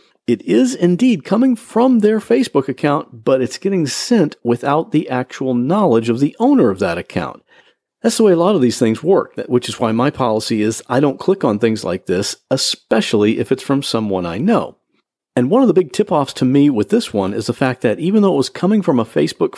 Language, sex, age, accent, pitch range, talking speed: English, male, 40-59, American, 120-180 Hz, 225 wpm